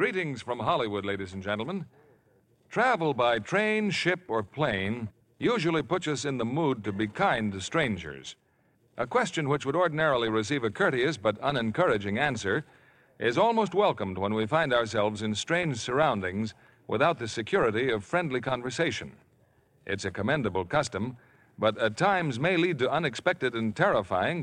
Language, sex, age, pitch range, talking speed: English, male, 50-69, 105-160 Hz, 155 wpm